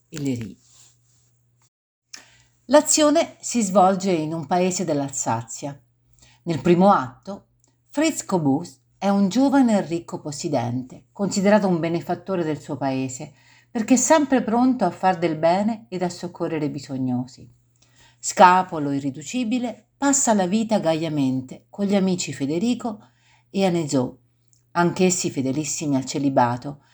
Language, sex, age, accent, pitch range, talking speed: Italian, female, 50-69, native, 130-200 Hz, 120 wpm